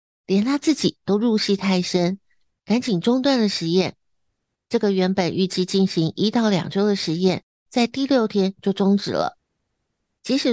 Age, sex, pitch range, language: 60-79, female, 180-225 Hz, Chinese